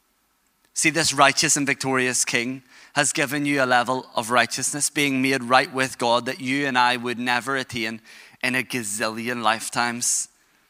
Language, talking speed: English, 165 wpm